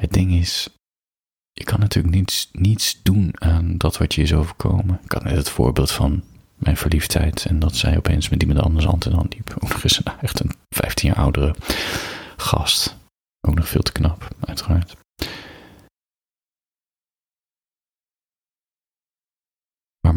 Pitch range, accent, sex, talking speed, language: 80-100 Hz, Dutch, male, 150 wpm, Dutch